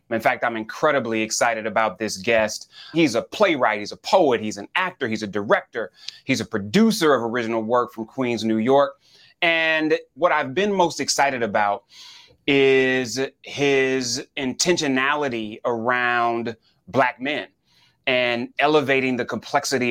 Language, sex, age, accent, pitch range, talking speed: English, male, 30-49, American, 115-145 Hz, 140 wpm